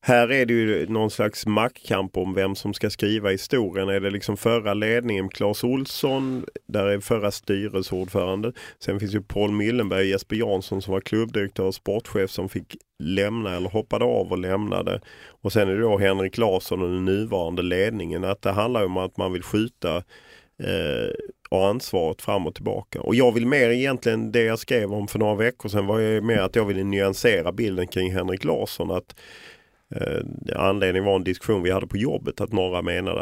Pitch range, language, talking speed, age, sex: 95-115 Hz, Swedish, 190 wpm, 30-49, male